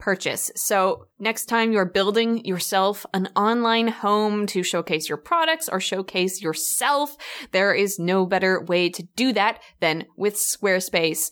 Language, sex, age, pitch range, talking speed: English, female, 20-39, 175-230 Hz, 150 wpm